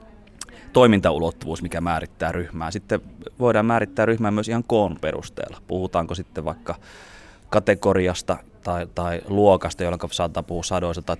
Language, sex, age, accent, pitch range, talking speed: Finnish, male, 20-39, native, 85-100 Hz, 130 wpm